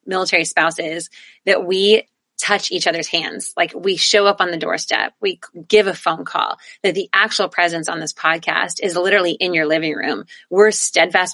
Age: 30-49